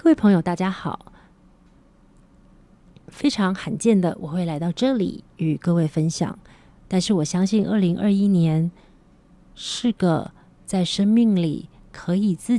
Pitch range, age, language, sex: 165-215 Hz, 30-49, Chinese, female